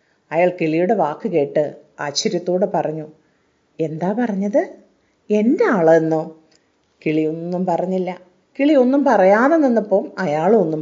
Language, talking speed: Malayalam, 95 wpm